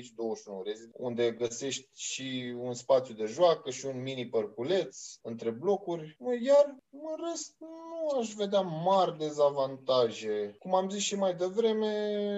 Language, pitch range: Romanian, 125-175 Hz